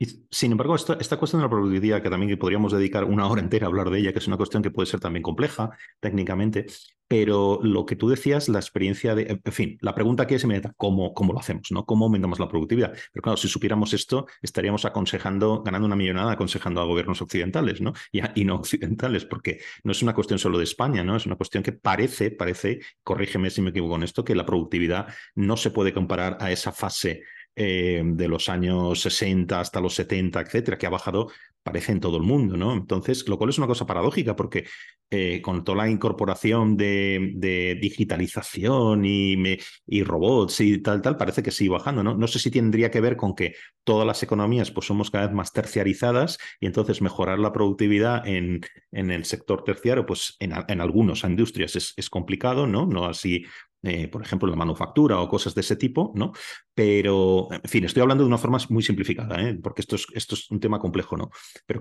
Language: Spanish